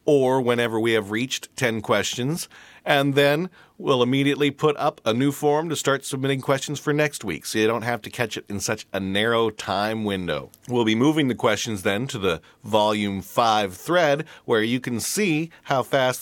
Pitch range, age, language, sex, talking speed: 110-140 Hz, 40-59, English, male, 195 wpm